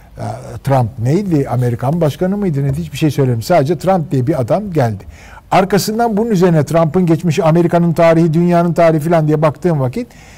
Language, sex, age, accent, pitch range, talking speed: Turkish, male, 50-69, native, 120-175 Hz, 160 wpm